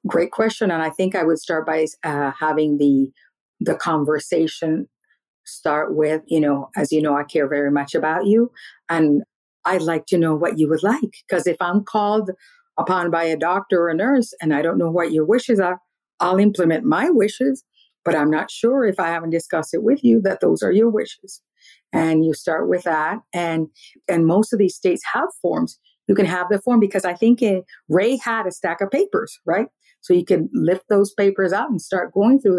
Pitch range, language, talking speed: 160-225 Hz, English, 210 wpm